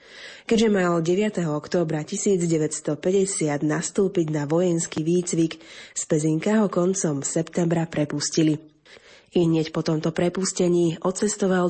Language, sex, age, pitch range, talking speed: Slovak, female, 30-49, 160-185 Hz, 105 wpm